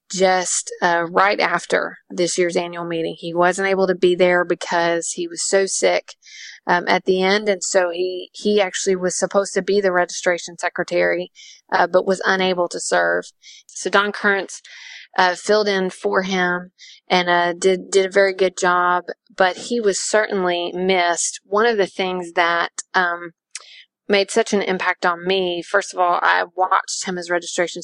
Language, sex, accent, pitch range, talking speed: English, female, American, 175-195 Hz, 175 wpm